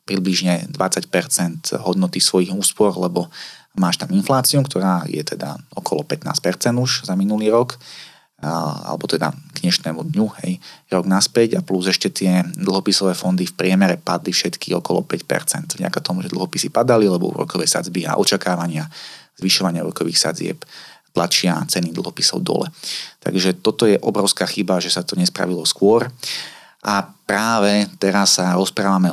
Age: 30-49